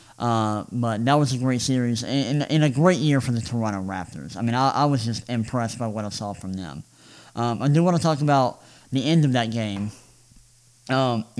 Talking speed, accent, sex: 220 wpm, American, male